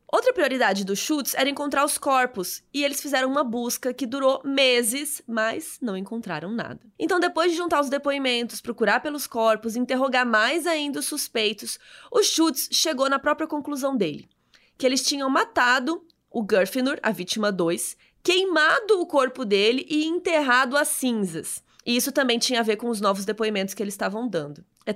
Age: 20-39